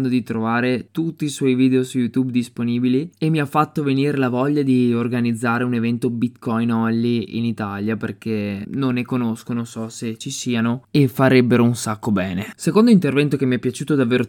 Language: Italian